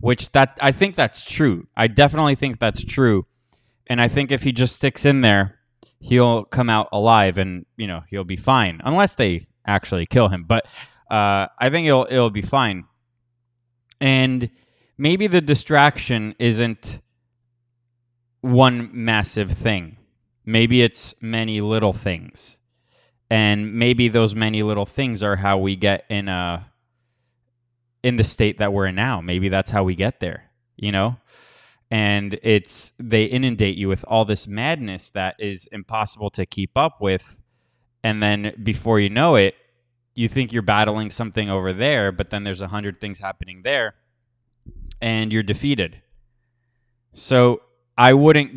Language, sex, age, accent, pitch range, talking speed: English, male, 20-39, American, 100-120 Hz, 155 wpm